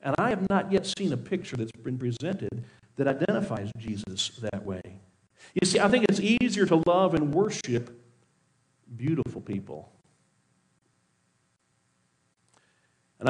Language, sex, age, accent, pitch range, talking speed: English, male, 50-69, American, 120-185 Hz, 130 wpm